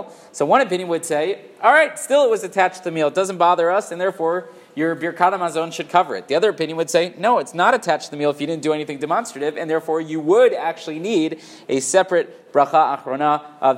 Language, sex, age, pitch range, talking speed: English, male, 30-49, 140-175 Hz, 235 wpm